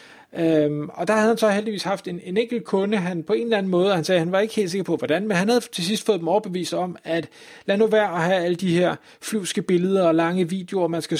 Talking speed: 280 wpm